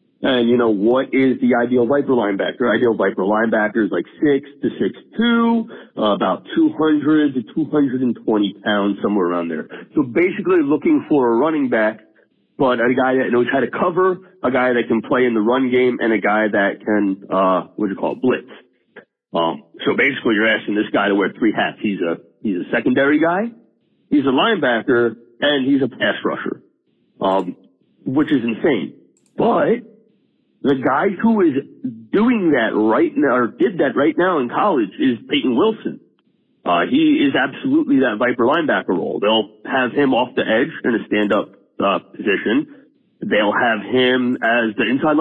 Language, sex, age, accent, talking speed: English, male, 40-59, American, 190 wpm